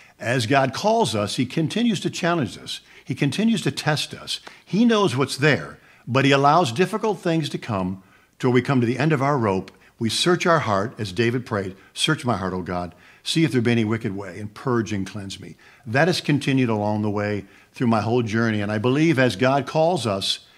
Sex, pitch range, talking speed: male, 105-135 Hz, 220 wpm